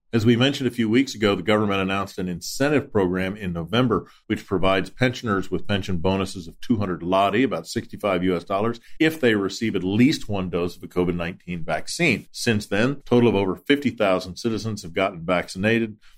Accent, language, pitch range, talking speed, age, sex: American, English, 95-115 Hz, 185 wpm, 40-59, male